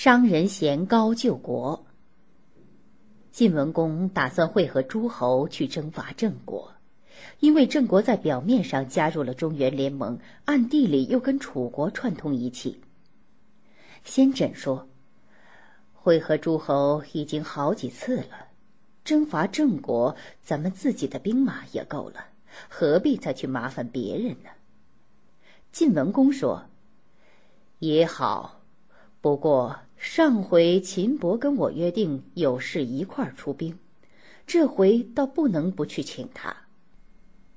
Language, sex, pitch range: Chinese, female, 155-245 Hz